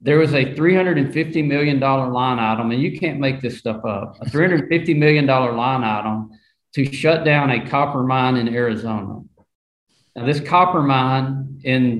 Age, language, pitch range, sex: 40-59, English, 115-145 Hz, male